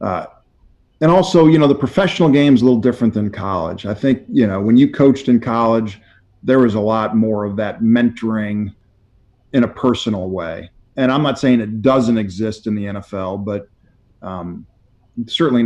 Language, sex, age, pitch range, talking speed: English, male, 40-59, 100-120 Hz, 185 wpm